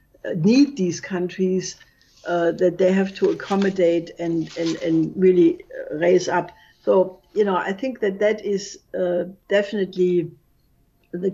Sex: female